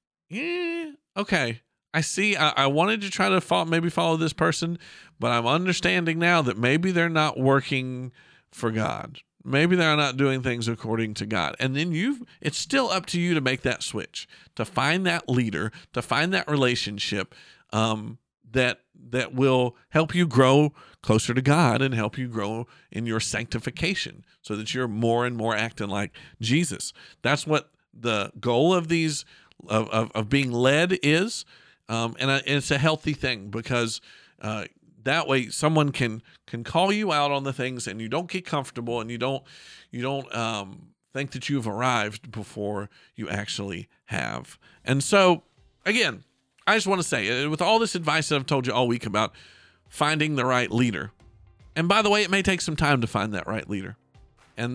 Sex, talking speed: male, 185 wpm